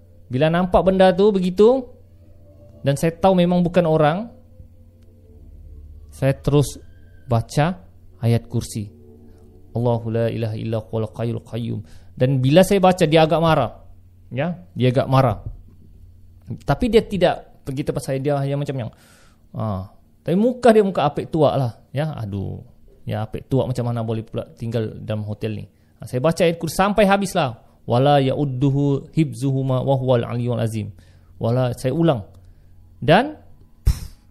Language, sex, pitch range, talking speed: Malay, male, 100-140 Hz, 140 wpm